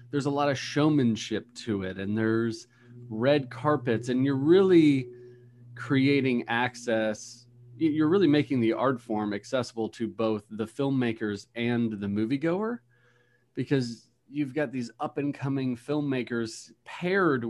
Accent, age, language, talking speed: American, 40-59, English, 135 wpm